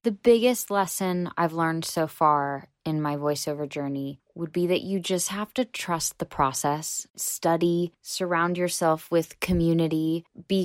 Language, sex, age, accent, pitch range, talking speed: English, female, 10-29, American, 150-180 Hz, 150 wpm